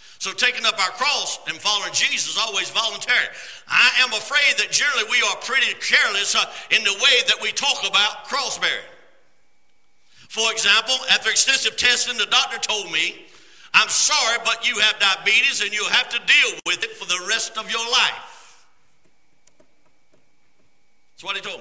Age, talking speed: 60-79, 170 wpm